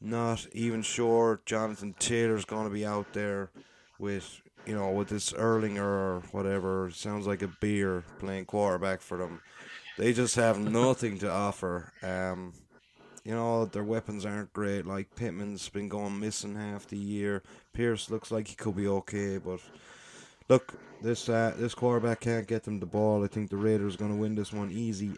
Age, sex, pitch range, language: 30-49, male, 100-115 Hz, English